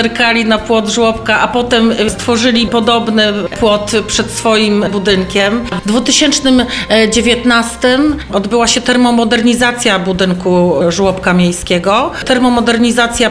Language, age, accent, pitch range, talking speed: Polish, 40-59, native, 220-250 Hz, 95 wpm